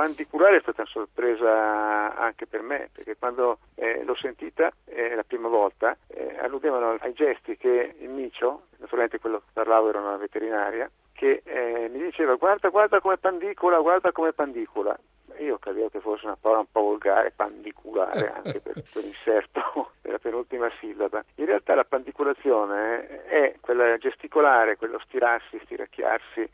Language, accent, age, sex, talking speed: Italian, native, 50-69, male, 165 wpm